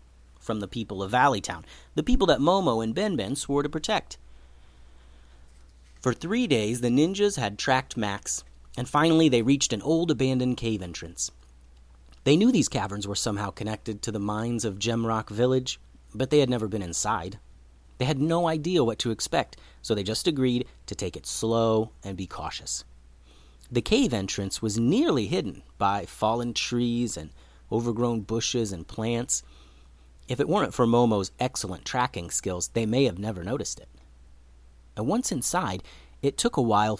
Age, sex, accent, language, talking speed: 30-49, male, American, English, 165 wpm